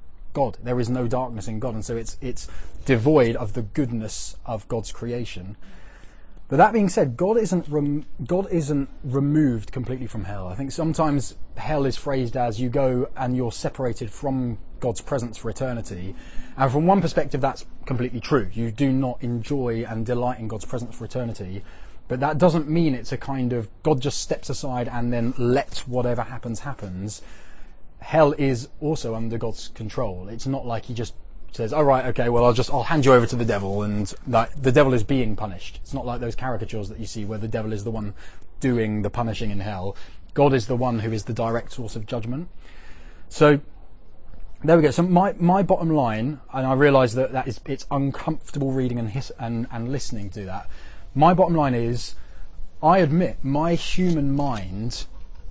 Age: 20-39